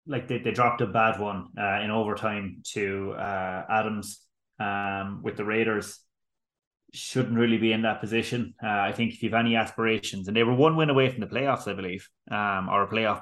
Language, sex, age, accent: English, male, 20-39, Irish